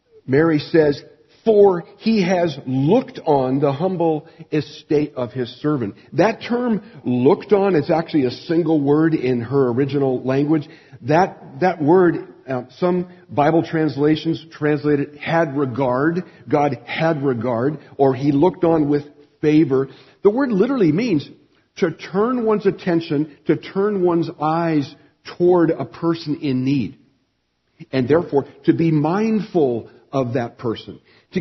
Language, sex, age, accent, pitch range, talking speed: English, male, 50-69, American, 140-190 Hz, 140 wpm